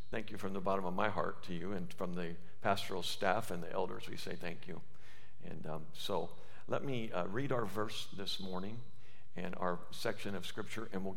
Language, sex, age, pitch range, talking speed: English, male, 50-69, 100-125 Hz, 215 wpm